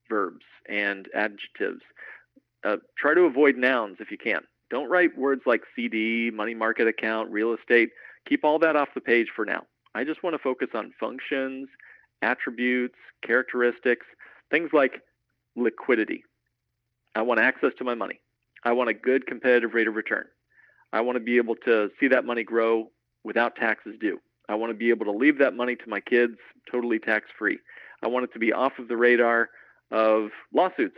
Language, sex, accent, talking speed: English, male, American, 180 wpm